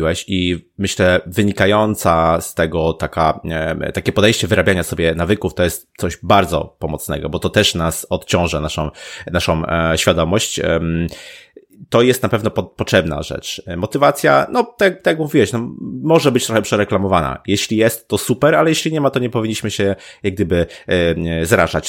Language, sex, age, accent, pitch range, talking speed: Polish, male, 30-49, native, 80-110 Hz, 150 wpm